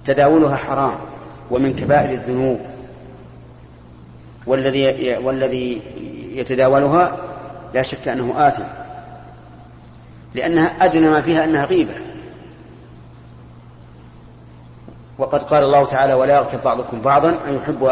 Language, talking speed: Arabic, 95 wpm